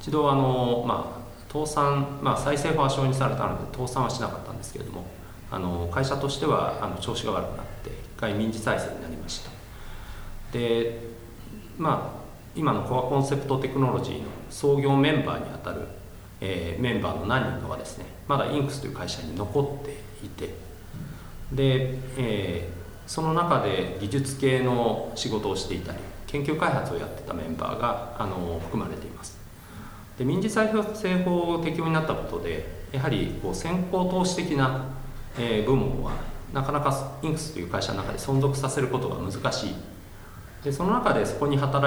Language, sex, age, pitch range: Japanese, male, 40-59, 100-140 Hz